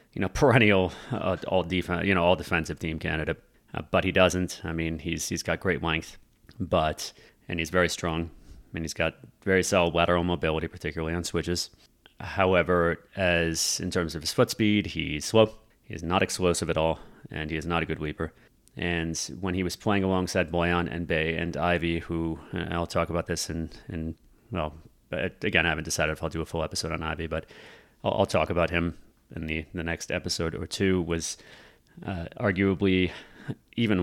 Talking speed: 190 wpm